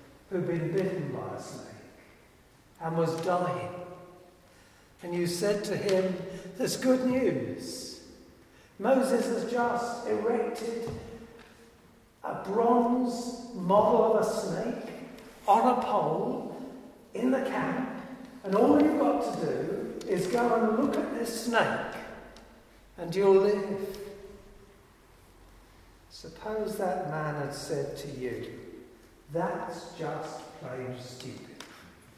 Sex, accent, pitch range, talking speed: male, British, 180-235 Hz, 110 wpm